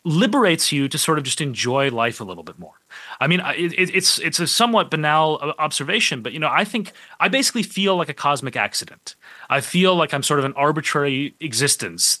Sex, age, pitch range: male, 30-49, 140-185 Hz